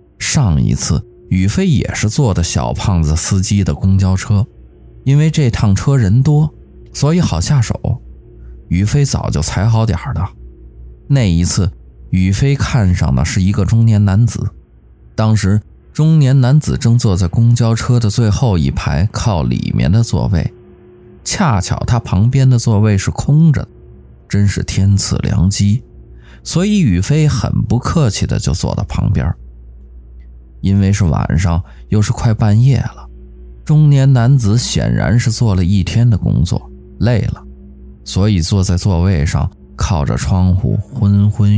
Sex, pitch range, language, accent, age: male, 90-120 Hz, Chinese, native, 20-39